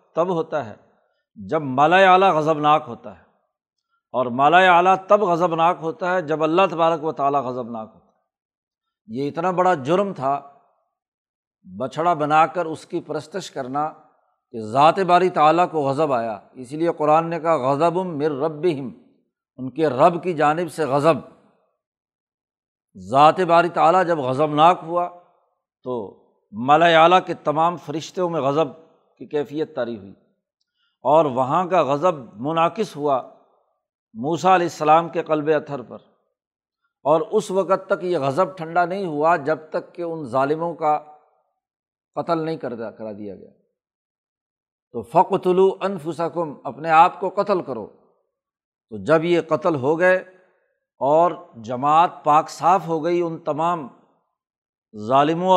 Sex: male